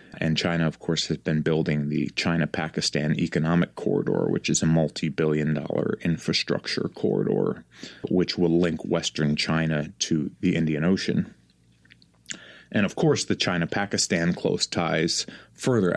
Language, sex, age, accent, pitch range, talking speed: English, male, 30-49, American, 80-95 Hz, 130 wpm